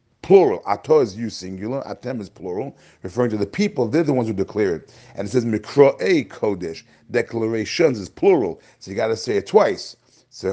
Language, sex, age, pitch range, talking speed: English, male, 40-59, 115-155 Hz, 190 wpm